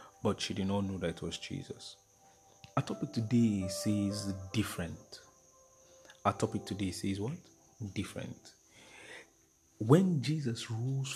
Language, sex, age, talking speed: English, male, 40-59, 125 wpm